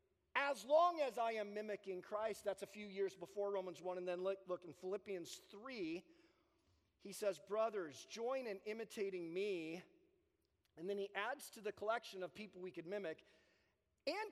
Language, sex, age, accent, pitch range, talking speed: English, male, 40-59, American, 190-275 Hz, 170 wpm